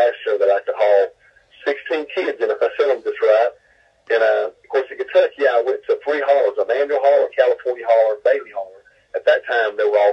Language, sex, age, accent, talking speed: English, male, 50-69, American, 245 wpm